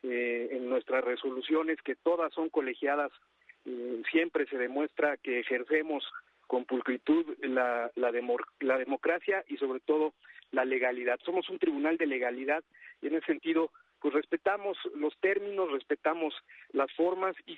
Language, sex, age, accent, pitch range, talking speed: Spanish, male, 50-69, Mexican, 130-170 Hz, 145 wpm